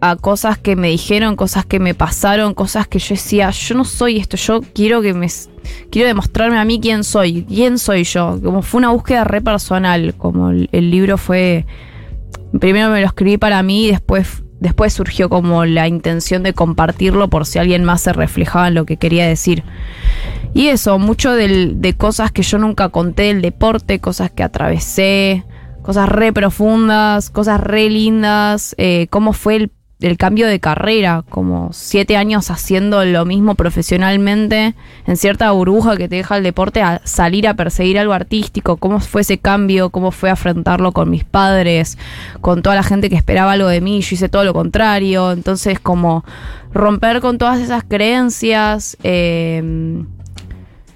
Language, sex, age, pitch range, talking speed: Spanish, female, 20-39, 175-210 Hz, 175 wpm